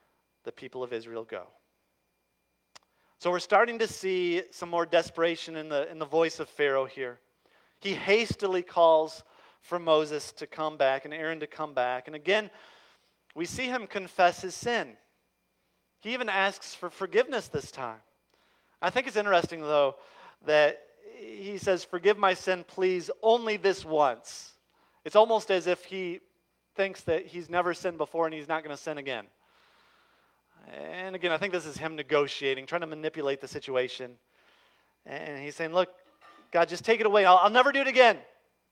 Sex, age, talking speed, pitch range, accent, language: male, 40-59, 170 wpm, 145-185 Hz, American, English